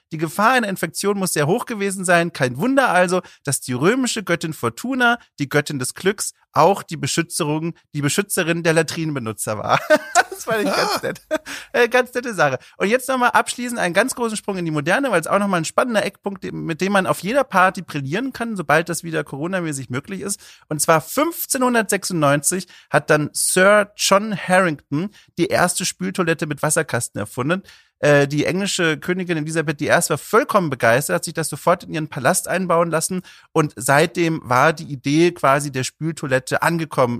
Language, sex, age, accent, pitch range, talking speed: German, male, 40-59, German, 150-200 Hz, 175 wpm